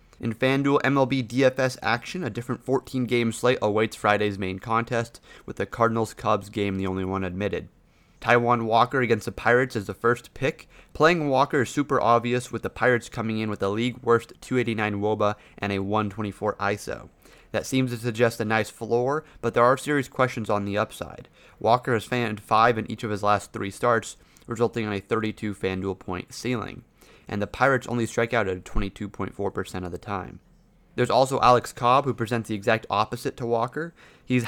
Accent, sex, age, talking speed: American, male, 30-49, 185 wpm